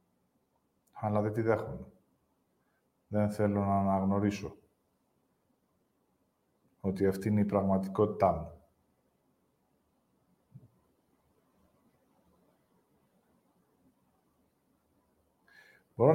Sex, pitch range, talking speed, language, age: male, 100-125 Hz, 55 wpm, Greek, 50-69